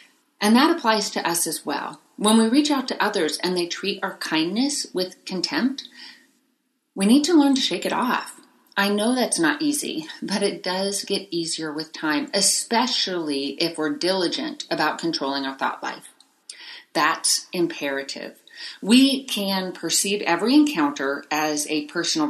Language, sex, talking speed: English, female, 160 wpm